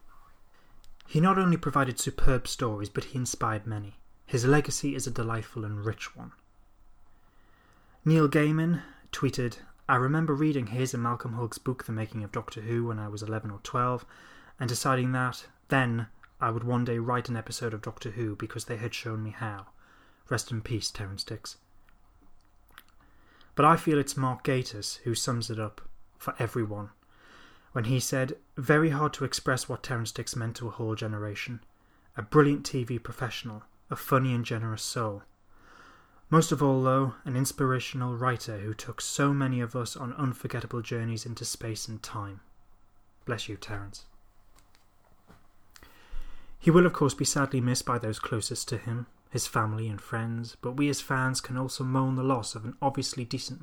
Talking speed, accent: 170 wpm, British